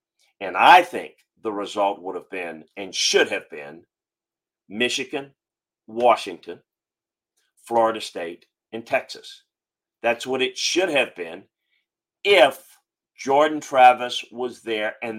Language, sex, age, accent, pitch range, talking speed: English, male, 50-69, American, 115-155 Hz, 120 wpm